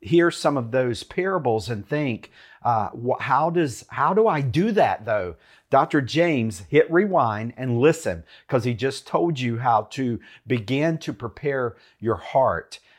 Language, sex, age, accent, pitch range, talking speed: English, male, 50-69, American, 125-160 Hz, 155 wpm